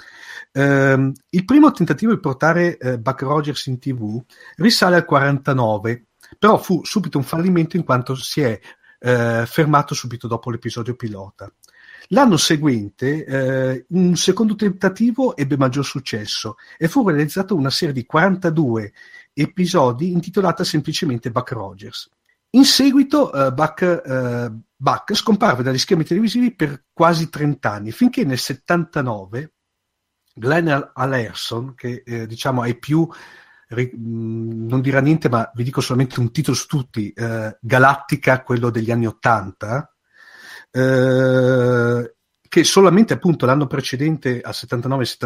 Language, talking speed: Italian, 135 wpm